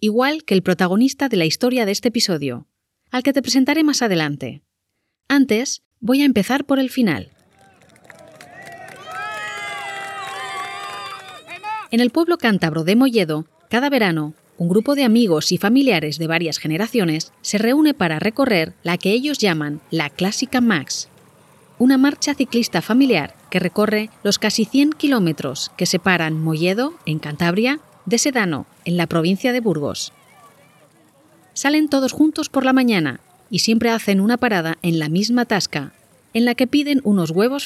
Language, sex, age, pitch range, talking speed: Spanish, female, 30-49, 160-250 Hz, 150 wpm